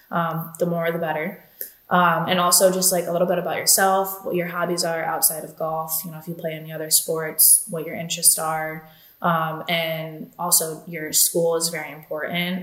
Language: English